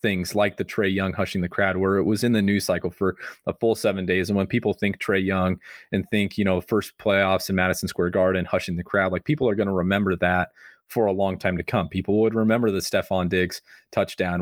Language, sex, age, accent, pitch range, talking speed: English, male, 30-49, American, 90-100 Hz, 245 wpm